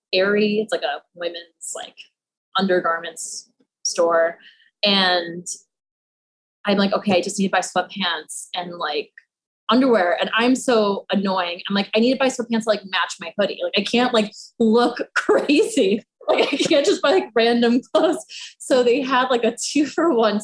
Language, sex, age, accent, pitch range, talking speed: English, female, 20-39, American, 180-240 Hz, 175 wpm